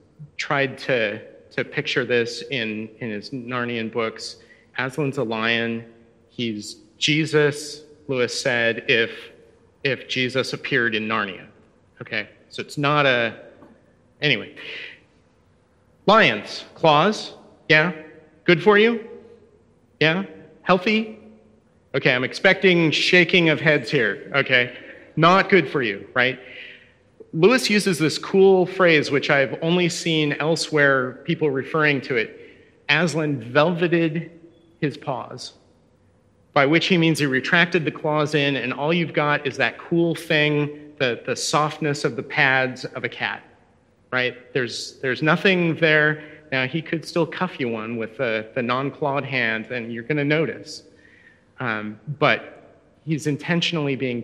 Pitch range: 125-165 Hz